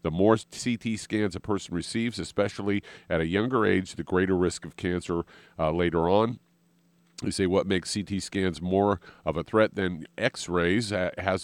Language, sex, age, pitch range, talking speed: English, male, 50-69, 85-105 Hz, 180 wpm